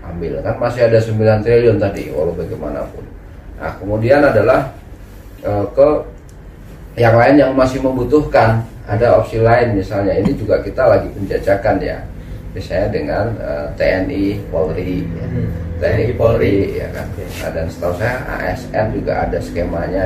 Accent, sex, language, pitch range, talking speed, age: native, male, Indonesian, 85-110 Hz, 140 wpm, 30-49